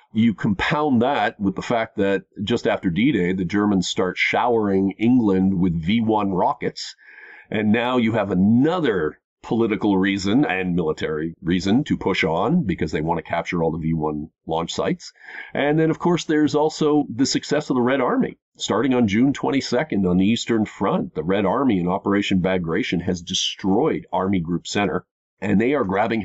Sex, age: male, 40-59